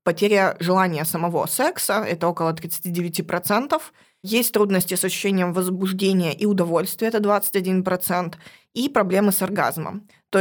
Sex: female